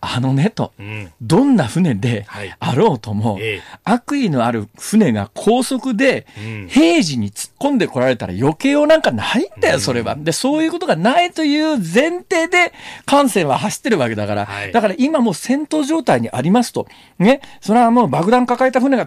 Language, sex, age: Japanese, male, 50-69